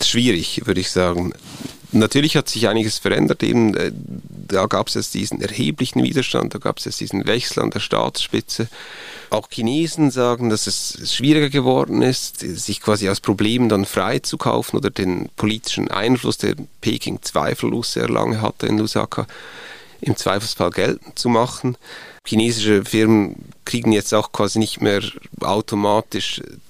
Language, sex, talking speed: German, male, 150 wpm